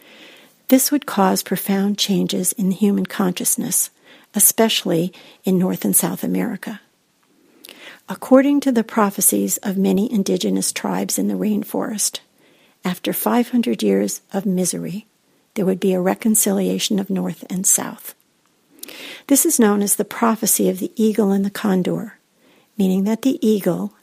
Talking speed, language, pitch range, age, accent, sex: 140 wpm, English, 180-225 Hz, 50-69, American, female